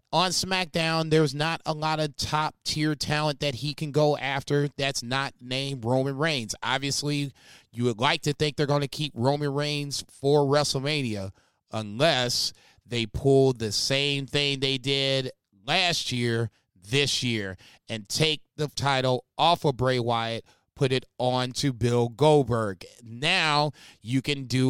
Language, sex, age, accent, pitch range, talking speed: English, male, 30-49, American, 125-150 Hz, 155 wpm